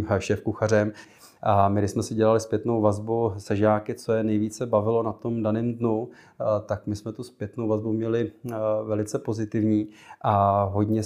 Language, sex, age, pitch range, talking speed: Czech, male, 30-49, 105-110 Hz, 170 wpm